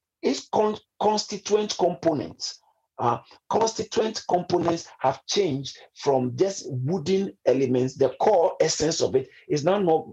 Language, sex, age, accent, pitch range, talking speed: English, male, 50-69, Nigerian, 155-220 Hz, 125 wpm